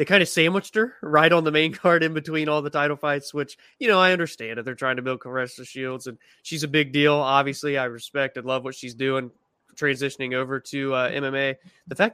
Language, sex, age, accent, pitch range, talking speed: English, male, 20-39, American, 135-165 Hz, 240 wpm